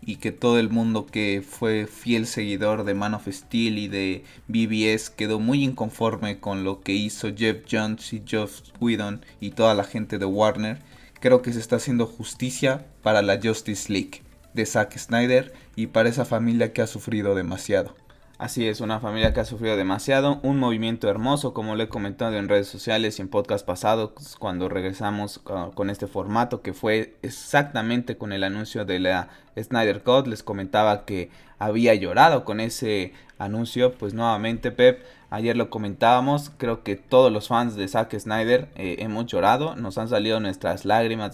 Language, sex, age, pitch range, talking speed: Spanish, male, 20-39, 100-120 Hz, 175 wpm